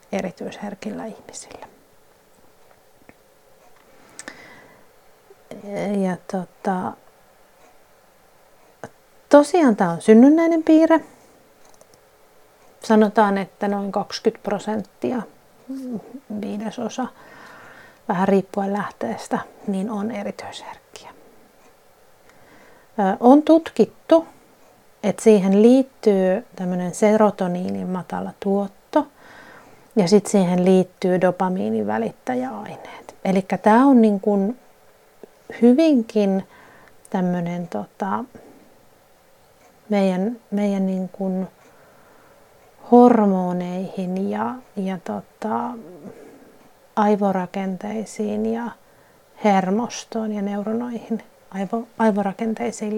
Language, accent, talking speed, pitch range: Finnish, native, 65 wpm, 195-230 Hz